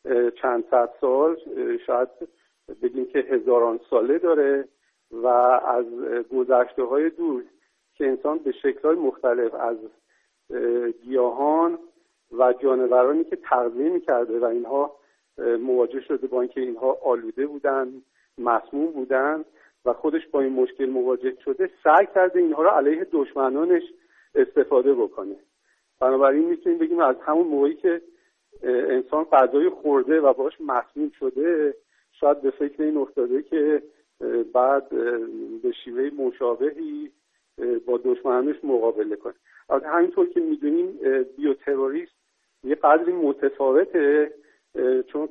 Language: Persian